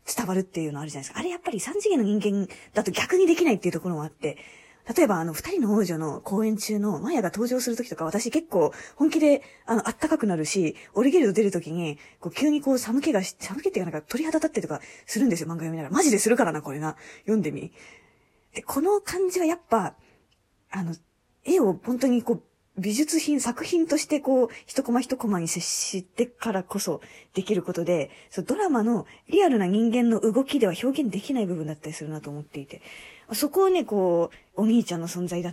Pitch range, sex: 170-260 Hz, female